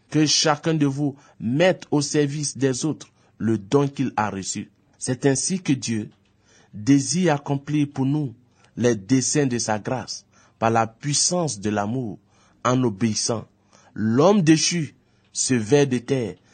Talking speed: 145 wpm